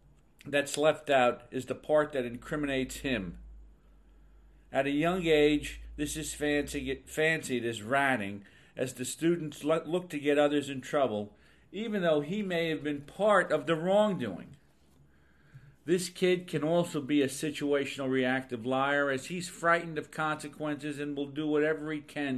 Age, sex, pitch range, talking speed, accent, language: 50-69, male, 115-155 Hz, 155 wpm, American, English